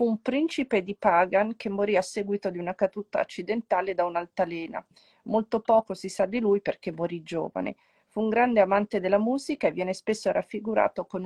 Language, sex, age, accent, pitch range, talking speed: Italian, female, 40-59, native, 185-220 Hz, 185 wpm